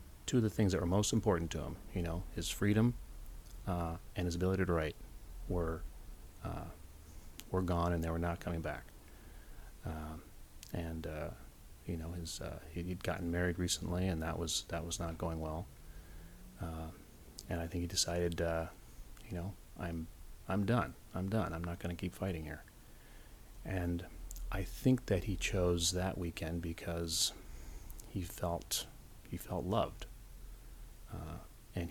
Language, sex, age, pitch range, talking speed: English, male, 30-49, 80-100 Hz, 160 wpm